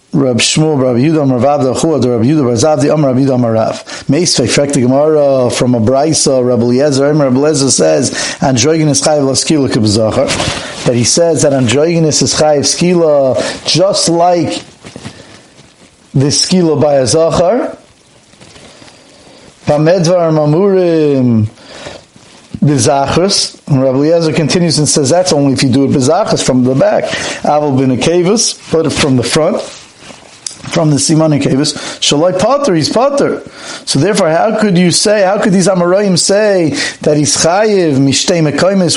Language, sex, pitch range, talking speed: English, male, 135-175 Hz, 150 wpm